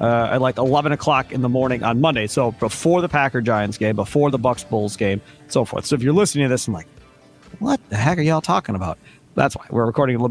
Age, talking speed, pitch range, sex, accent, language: 40-59, 255 wpm, 120-160 Hz, male, American, English